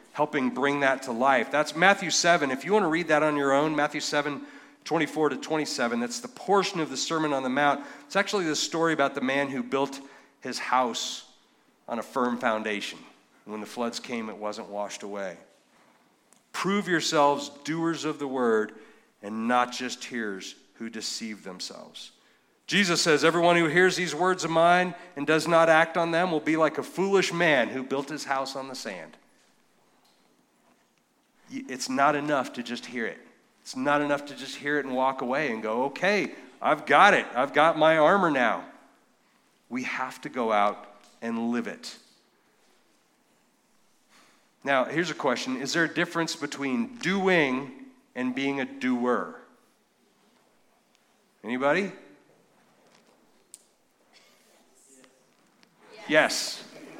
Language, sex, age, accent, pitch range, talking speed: English, male, 40-59, American, 125-170 Hz, 155 wpm